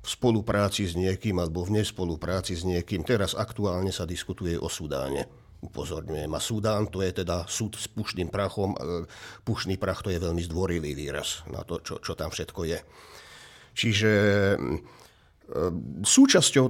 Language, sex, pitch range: Slovak, male, 90-110 Hz